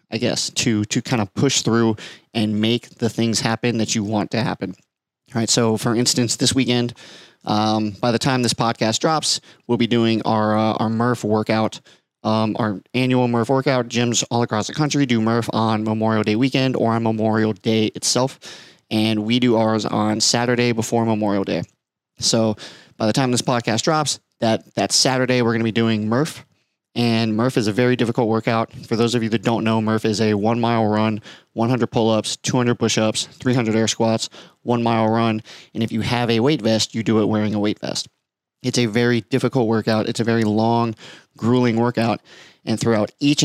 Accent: American